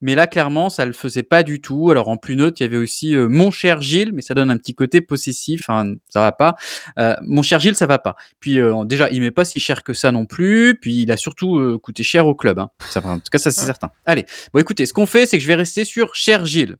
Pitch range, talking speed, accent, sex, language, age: 125-165 Hz, 300 wpm, French, male, French, 20-39